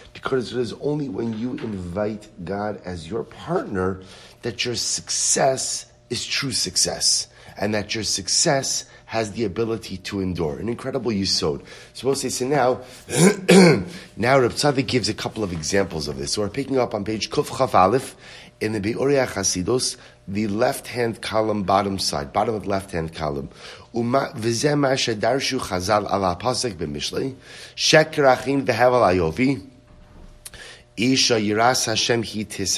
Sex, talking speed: male, 125 wpm